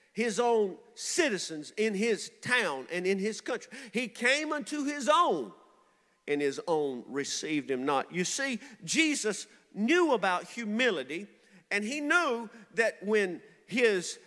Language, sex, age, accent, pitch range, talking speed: English, male, 50-69, American, 200-260 Hz, 140 wpm